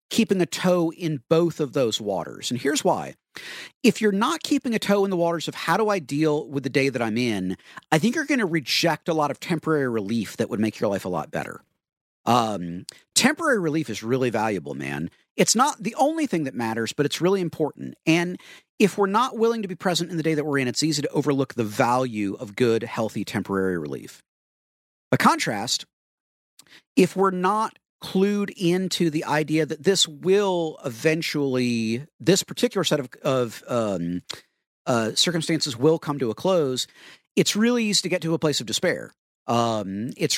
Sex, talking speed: male, 195 wpm